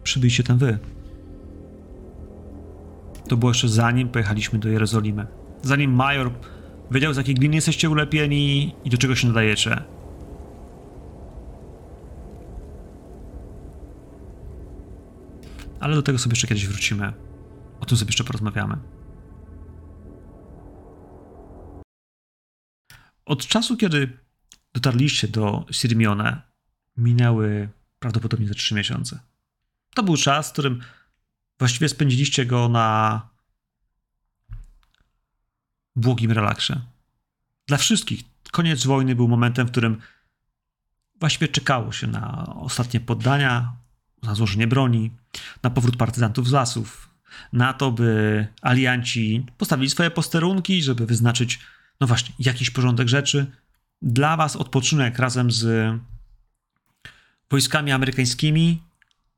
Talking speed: 100 wpm